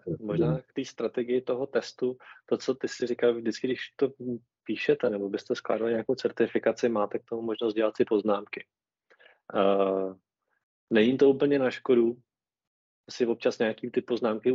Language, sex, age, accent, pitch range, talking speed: Czech, male, 20-39, native, 100-115 Hz, 155 wpm